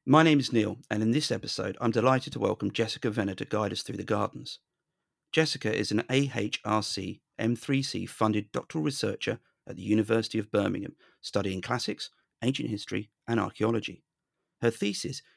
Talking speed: 160 wpm